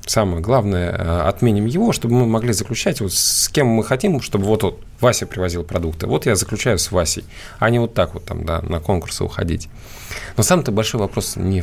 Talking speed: 190 wpm